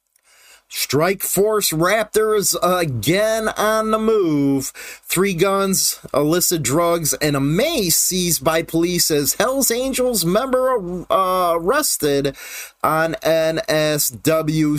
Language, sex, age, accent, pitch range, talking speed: English, male, 30-49, American, 145-195 Hz, 100 wpm